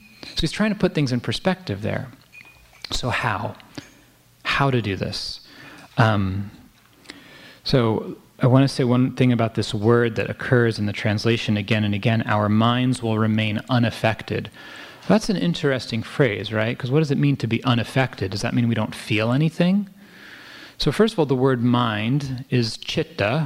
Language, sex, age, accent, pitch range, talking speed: English, male, 30-49, American, 110-140 Hz, 175 wpm